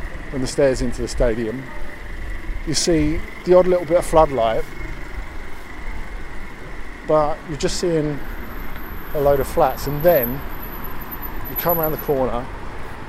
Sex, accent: male, British